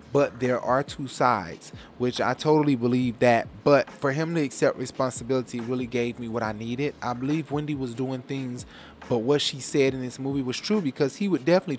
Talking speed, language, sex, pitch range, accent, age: 210 wpm, English, male, 120-145 Hz, American, 20-39